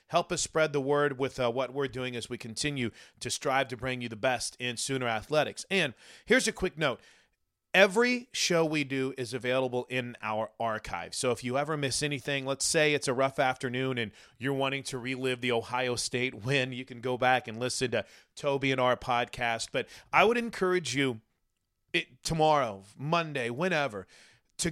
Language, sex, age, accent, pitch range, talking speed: English, male, 30-49, American, 120-155 Hz, 190 wpm